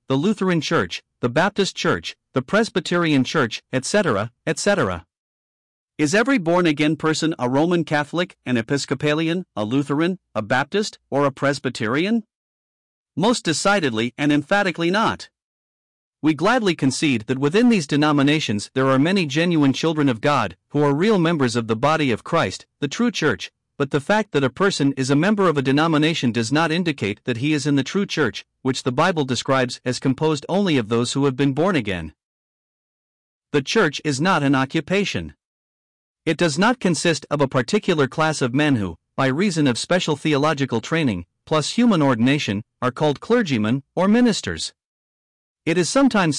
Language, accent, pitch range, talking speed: English, American, 130-170 Hz, 165 wpm